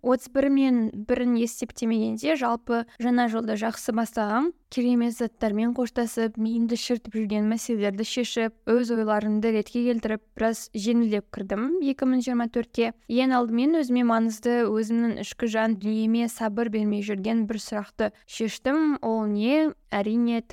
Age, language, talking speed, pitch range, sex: 10-29, Russian, 105 wpm, 215-250 Hz, female